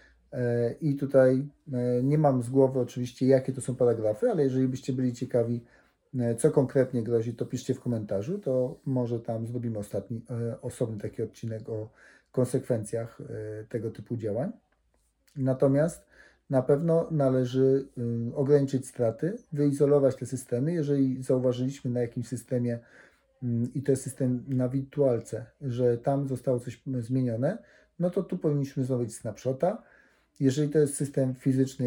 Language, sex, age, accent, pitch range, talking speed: Polish, male, 40-59, native, 120-140 Hz, 135 wpm